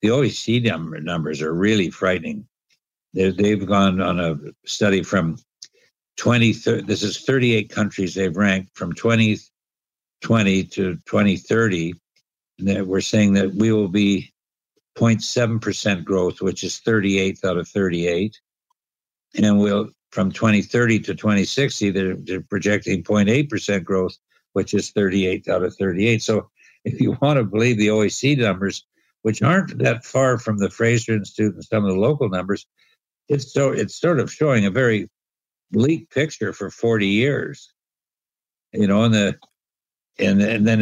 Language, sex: English, male